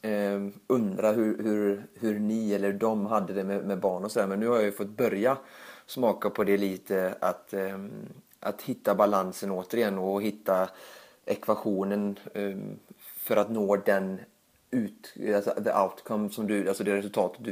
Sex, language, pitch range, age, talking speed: male, Swedish, 95-105 Hz, 30-49, 175 wpm